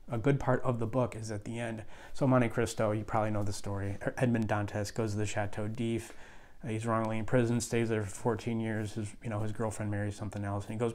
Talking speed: 245 wpm